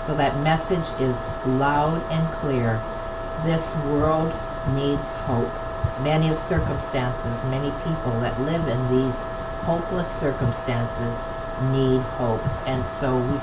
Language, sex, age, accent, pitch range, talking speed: English, female, 50-69, American, 130-165 Hz, 115 wpm